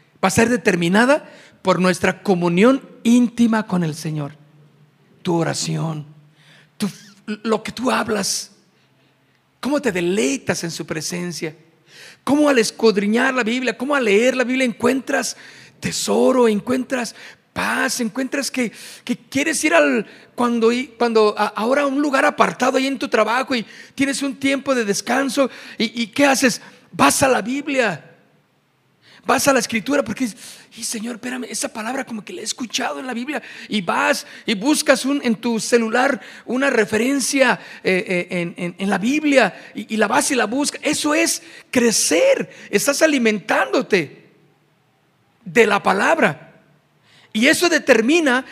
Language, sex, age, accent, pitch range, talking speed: Spanish, male, 50-69, Mexican, 195-260 Hz, 150 wpm